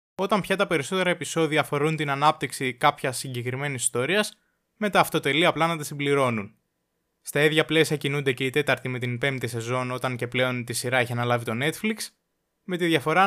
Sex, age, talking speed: male, 20-39, 185 wpm